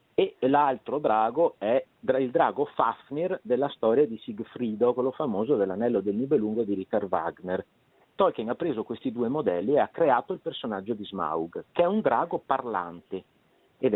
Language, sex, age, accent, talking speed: Italian, male, 50-69, native, 165 wpm